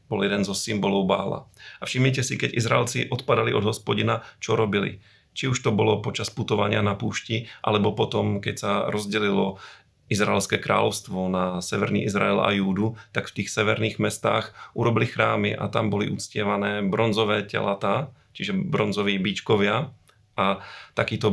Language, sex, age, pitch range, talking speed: Slovak, male, 40-59, 100-110 Hz, 150 wpm